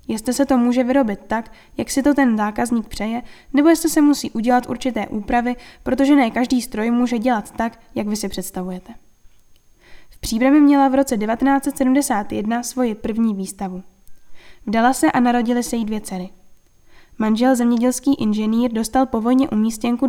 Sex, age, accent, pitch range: female, 10-29, native, 220-260 Hz